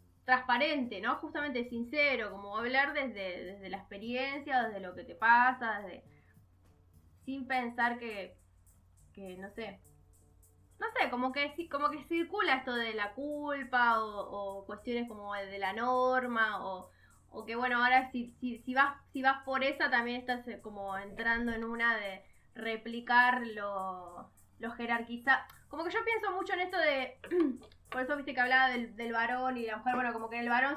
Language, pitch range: Spanish, 210-260 Hz